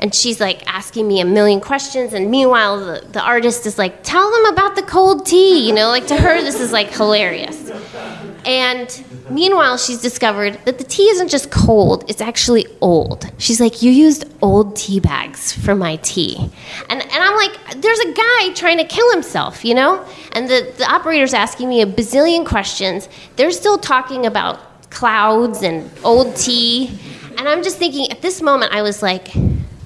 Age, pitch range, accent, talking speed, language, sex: 20-39, 210-320 Hz, American, 185 wpm, English, female